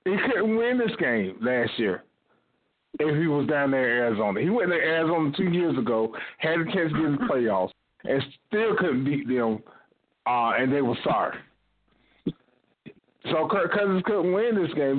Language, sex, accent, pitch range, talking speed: English, male, American, 120-160 Hz, 190 wpm